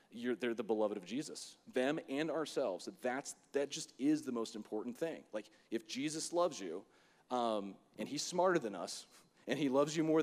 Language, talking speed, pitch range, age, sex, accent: English, 195 wpm, 110-150 Hz, 30-49, male, American